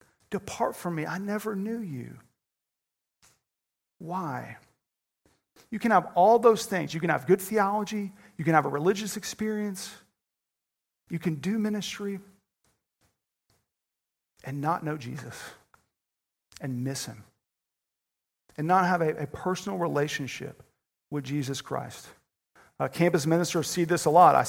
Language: English